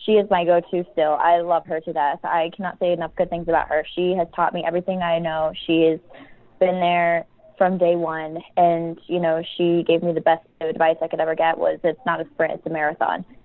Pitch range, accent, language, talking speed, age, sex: 155-170 Hz, American, English, 235 wpm, 20-39, female